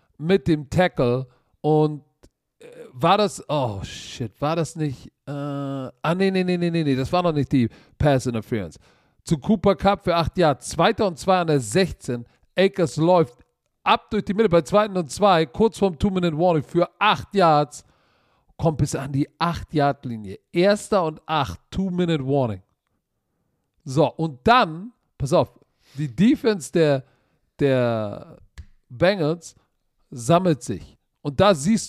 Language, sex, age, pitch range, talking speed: German, male, 50-69, 135-190 Hz, 145 wpm